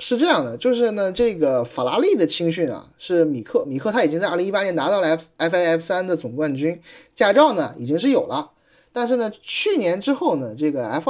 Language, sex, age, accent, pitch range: Chinese, male, 20-39, native, 145-230 Hz